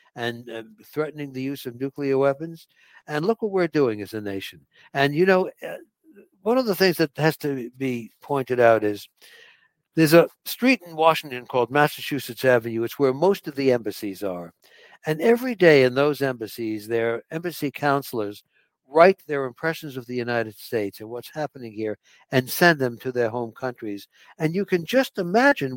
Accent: American